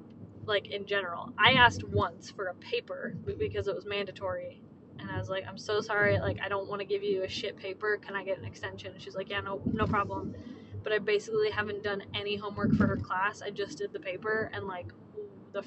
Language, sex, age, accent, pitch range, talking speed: English, female, 10-29, American, 195-230 Hz, 230 wpm